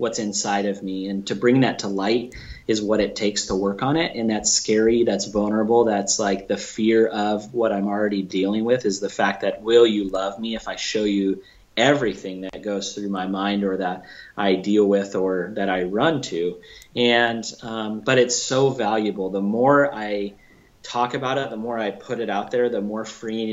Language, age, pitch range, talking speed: English, 30-49, 100-120 Hz, 210 wpm